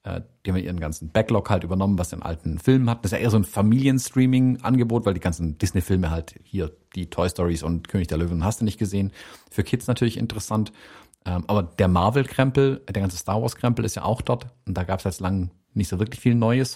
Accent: German